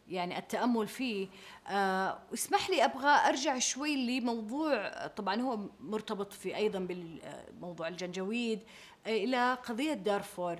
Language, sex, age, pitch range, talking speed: Arabic, female, 30-49, 190-245 Hz, 110 wpm